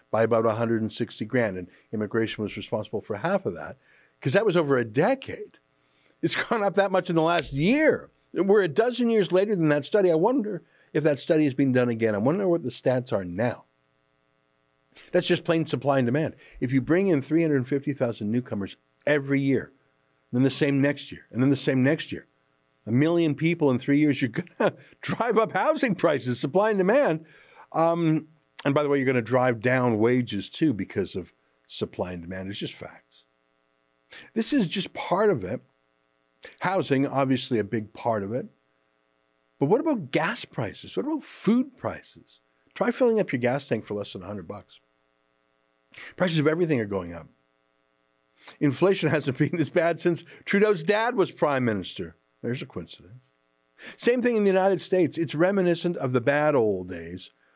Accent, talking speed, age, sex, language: American, 185 wpm, 50-69, male, English